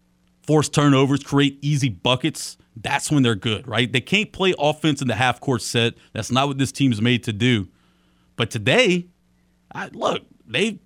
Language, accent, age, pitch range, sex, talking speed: English, American, 30-49, 115-160 Hz, male, 175 wpm